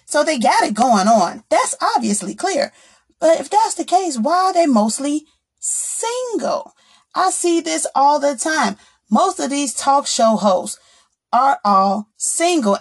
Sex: female